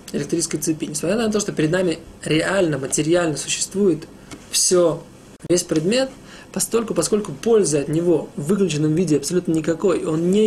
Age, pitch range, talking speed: 20-39, 155-190 Hz, 150 wpm